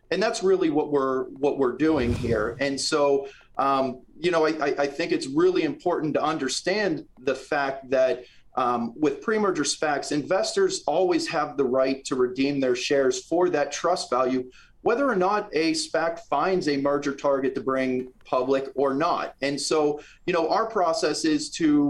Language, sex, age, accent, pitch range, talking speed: English, male, 30-49, American, 130-165 Hz, 175 wpm